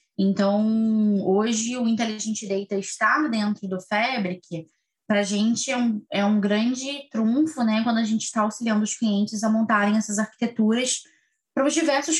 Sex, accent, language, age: female, Brazilian, Portuguese, 10-29